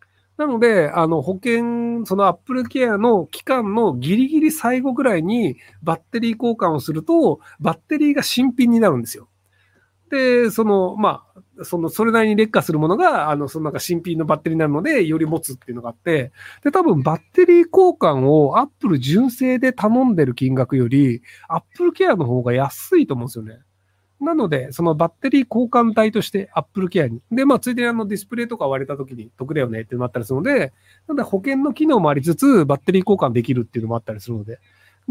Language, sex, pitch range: Japanese, male, 135-225 Hz